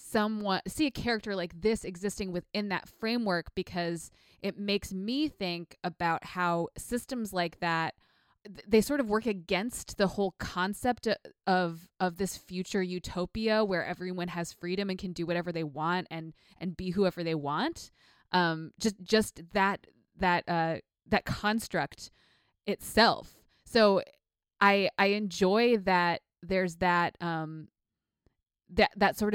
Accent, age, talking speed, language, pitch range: American, 20-39, 140 wpm, English, 170-205 Hz